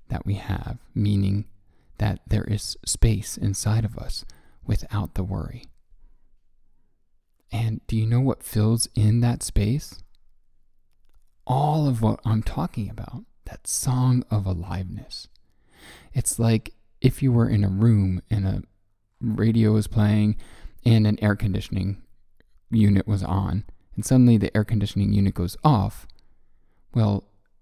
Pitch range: 95-115 Hz